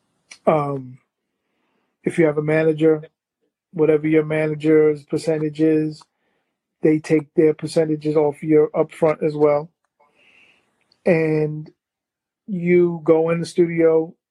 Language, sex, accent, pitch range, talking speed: English, male, American, 155-180 Hz, 110 wpm